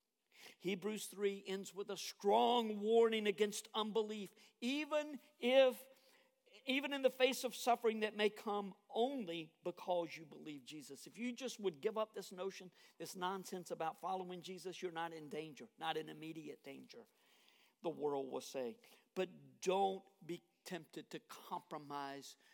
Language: English